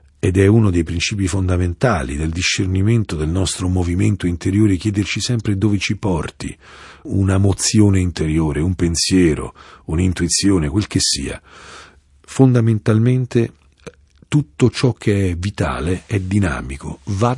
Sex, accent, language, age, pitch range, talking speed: male, native, Italian, 50-69, 80-110 Hz, 120 wpm